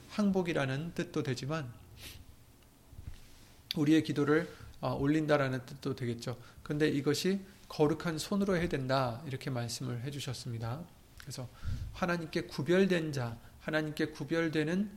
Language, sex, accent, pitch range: Korean, male, native, 120-160 Hz